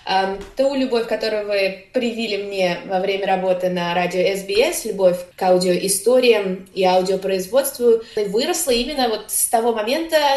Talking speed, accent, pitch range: 125 wpm, native, 195-255 Hz